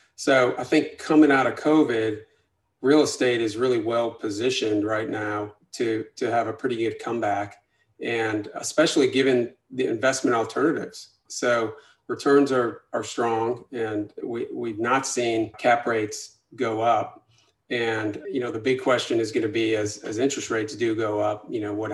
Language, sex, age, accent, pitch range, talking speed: English, male, 40-59, American, 105-135 Hz, 170 wpm